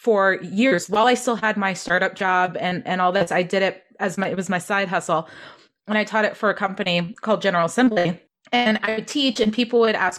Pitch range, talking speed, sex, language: 190-245 Hz, 240 wpm, female, English